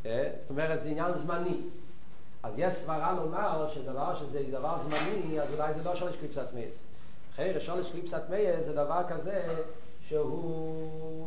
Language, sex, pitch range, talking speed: Hebrew, male, 155-205 Hz, 155 wpm